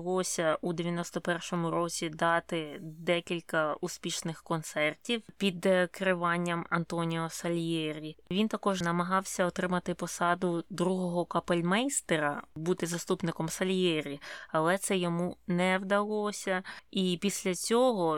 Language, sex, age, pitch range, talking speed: Ukrainian, female, 20-39, 170-195 Hz, 95 wpm